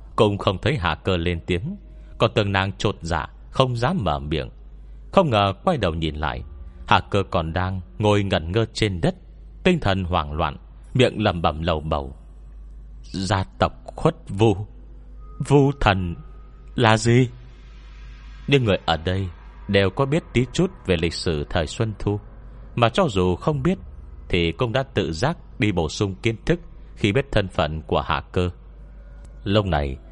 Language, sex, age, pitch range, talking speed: Vietnamese, male, 30-49, 80-115 Hz, 175 wpm